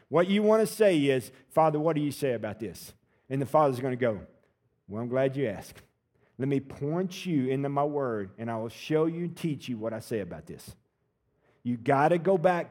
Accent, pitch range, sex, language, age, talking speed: American, 130-200 Hz, male, English, 50-69, 230 wpm